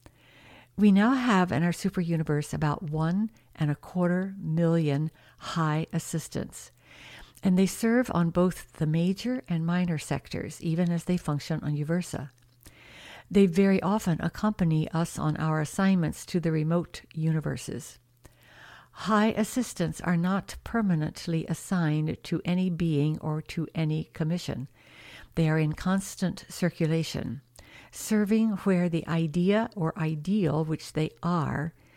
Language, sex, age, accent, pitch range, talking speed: English, female, 60-79, American, 150-180 Hz, 130 wpm